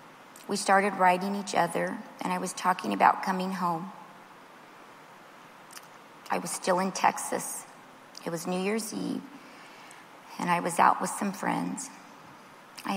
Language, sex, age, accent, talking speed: English, female, 30-49, American, 140 wpm